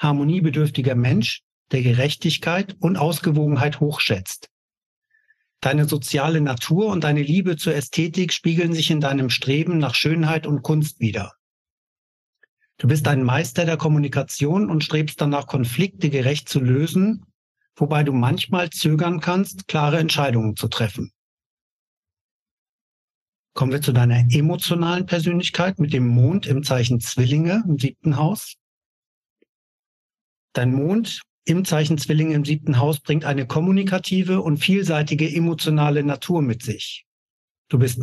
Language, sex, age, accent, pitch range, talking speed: German, male, 60-79, German, 135-170 Hz, 130 wpm